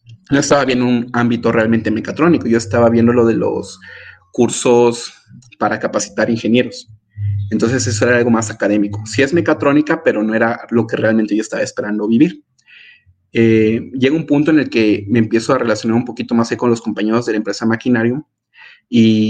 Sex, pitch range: male, 110-135 Hz